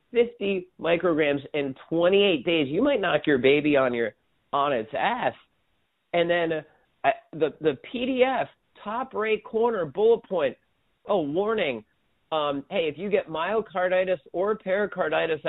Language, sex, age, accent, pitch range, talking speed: English, male, 40-59, American, 145-200 Hz, 140 wpm